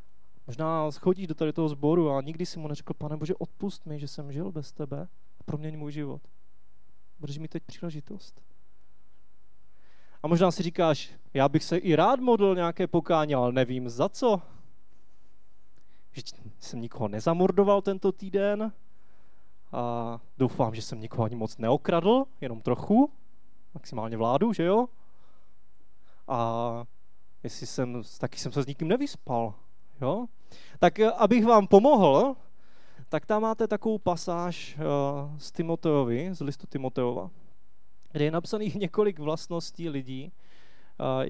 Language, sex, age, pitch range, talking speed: Czech, male, 20-39, 130-175 Hz, 140 wpm